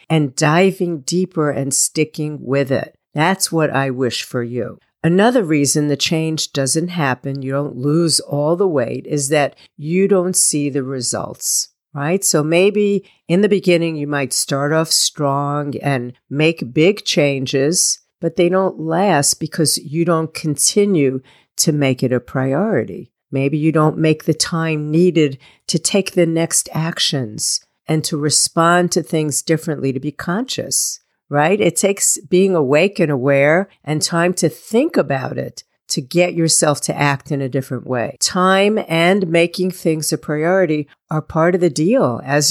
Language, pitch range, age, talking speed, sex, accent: English, 140-175 Hz, 50-69, 160 wpm, female, American